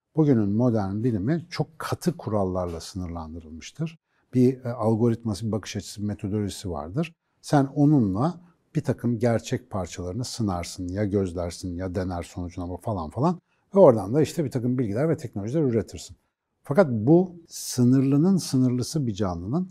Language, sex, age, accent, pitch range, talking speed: Turkish, male, 60-79, native, 100-140 Hz, 140 wpm